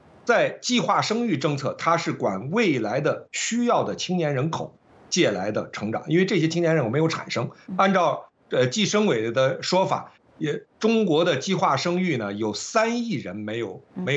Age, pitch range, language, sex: 60-79, 135-195 Hz, Chinese, male